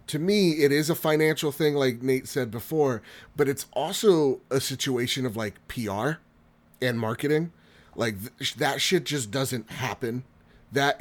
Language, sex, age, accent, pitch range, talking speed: English, male, 30-49, American, 105-135 Hz, 160 wpm